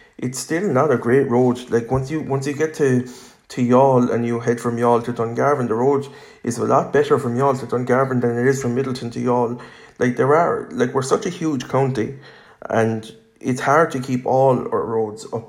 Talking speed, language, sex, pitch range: 220 wpm, English, male, 115-130 Hz